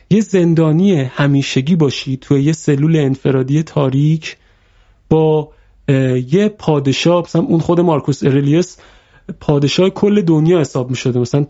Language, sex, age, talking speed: Persian, male, 30-49, 125 wpm